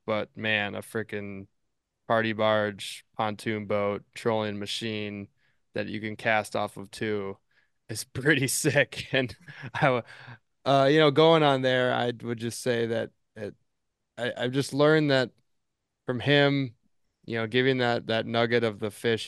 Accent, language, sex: American, English, male